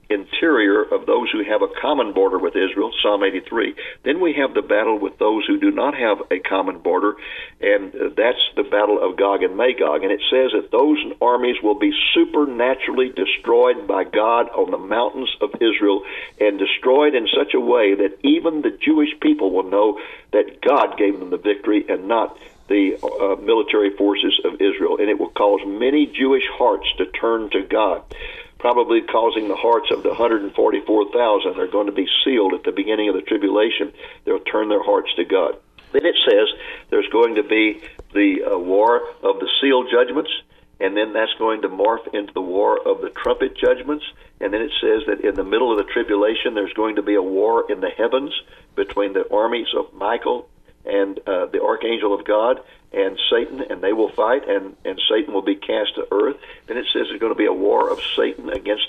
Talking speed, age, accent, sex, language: 200 wpm, 50-69, American, male, English